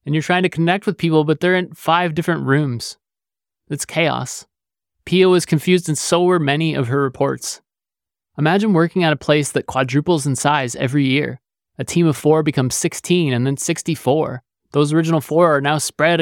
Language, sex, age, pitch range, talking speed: English, male, 20-39, 135-170 Hz, 190 wpm